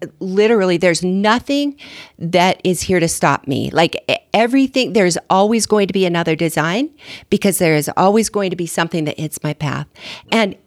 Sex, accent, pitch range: female, American, 165-225 Hz